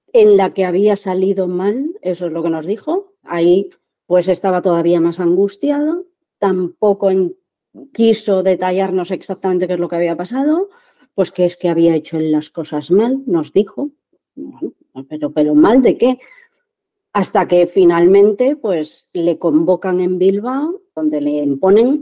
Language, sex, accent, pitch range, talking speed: Spanish, female, Spanish, 175-250 Hz, 155 wpm